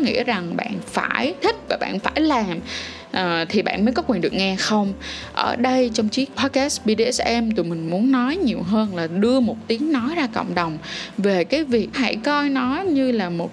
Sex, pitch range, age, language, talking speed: female, 190-255 Hz, 10-29, Vietnamese, 210 wpm